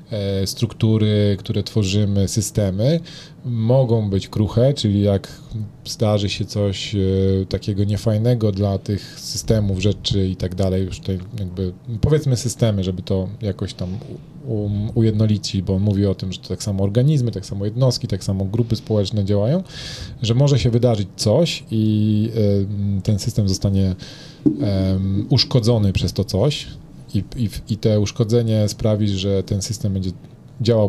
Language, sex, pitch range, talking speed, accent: Polish, male, 100-125 Hz, 140 wpm, native